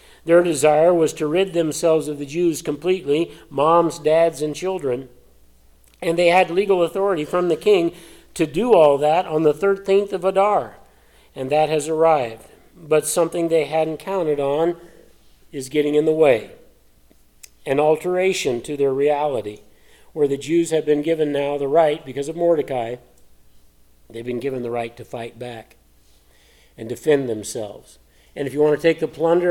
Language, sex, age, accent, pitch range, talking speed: English, male, 50-69, American, 140-170 Hz, 165 wpm